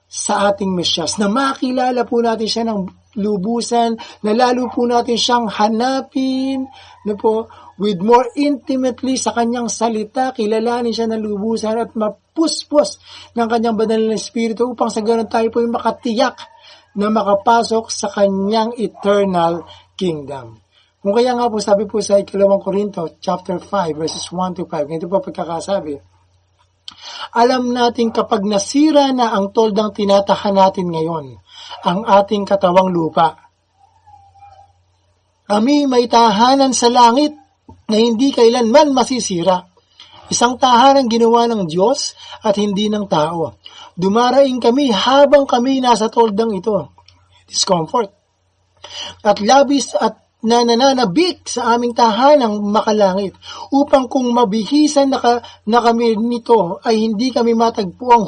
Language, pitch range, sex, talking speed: Filipino, 195-245 Hz, male, 130 wpm